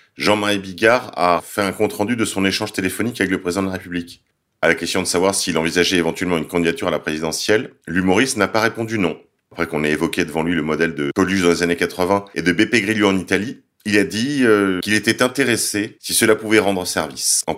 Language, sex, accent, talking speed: French, male, French, 225 wpm